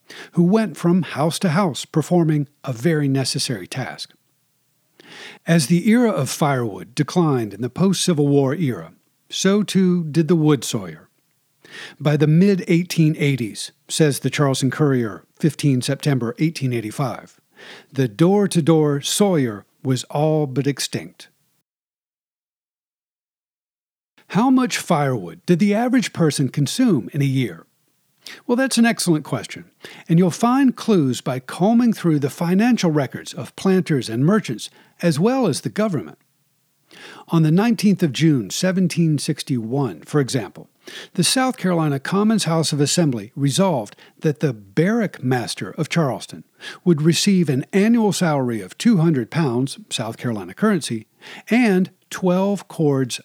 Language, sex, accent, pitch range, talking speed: English, male, American, 135-185 Hz, 130 wpm